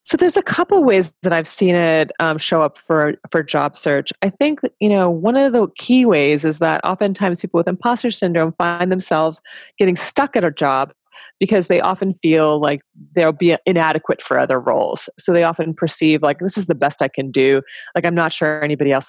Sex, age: female, 30-49